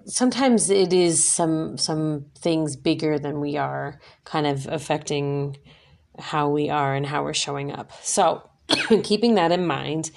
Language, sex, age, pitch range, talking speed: English, female, 30-49, 150-180 Hz, 155 wpm